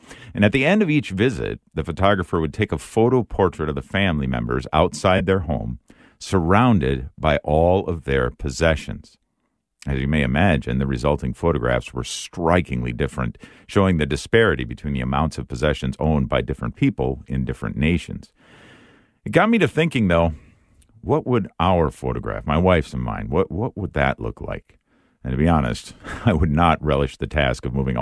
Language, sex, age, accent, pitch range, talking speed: English, male, 50-69, American, 70-100 Hz, 180 wpm